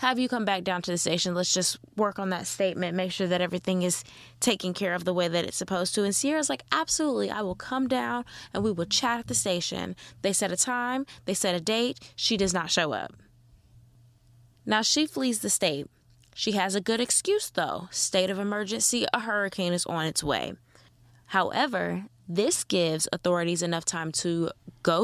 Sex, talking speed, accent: female, 200 wpm, American